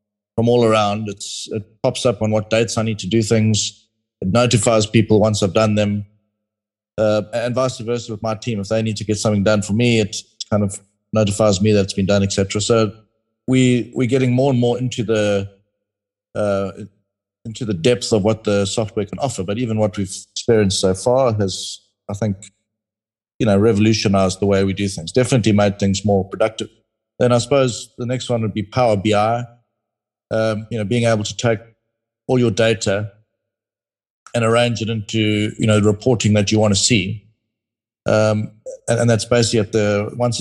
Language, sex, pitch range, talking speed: English, male, 105-120 Hz, 195 wpm